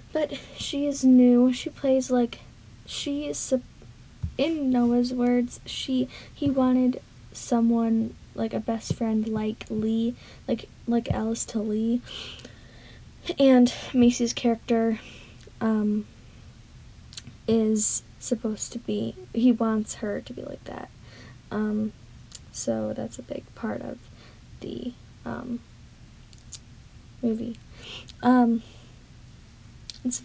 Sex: female